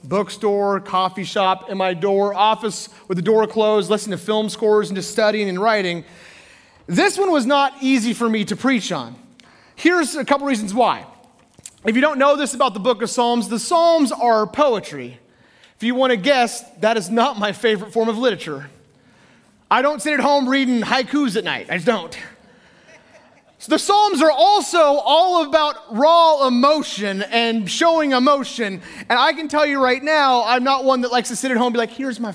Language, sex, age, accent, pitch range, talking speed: English, male, 30-49, American, 210-290 Hz, 200 wpm